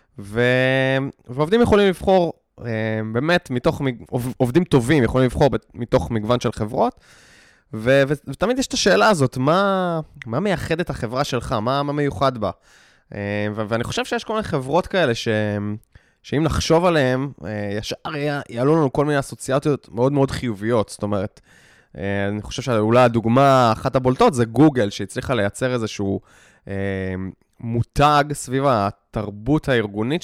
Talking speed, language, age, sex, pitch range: 135 wpm, Hebrew, 20-39, male, 110-150 Hz